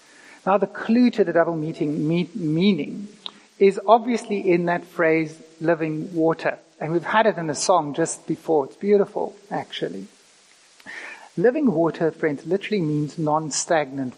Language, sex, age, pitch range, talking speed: English, male, 60-79, 160-205 Hz, 135 wpm